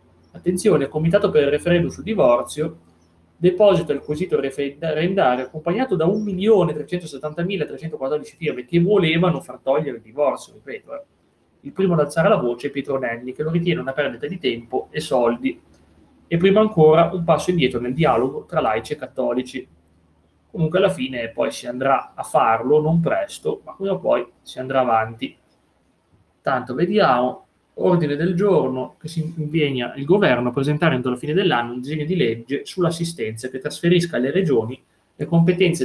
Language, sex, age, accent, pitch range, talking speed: Italian, male, 30-49, native, 125-175 Hz, 160 wpm